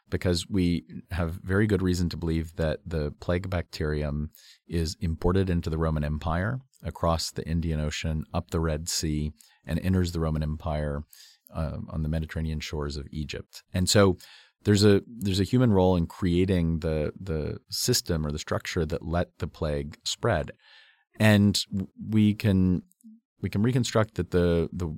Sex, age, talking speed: male, 40-59, 165 wpm